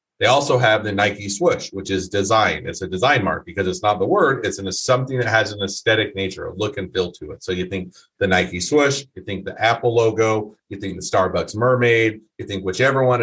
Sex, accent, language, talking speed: male, American, English, 240 wpm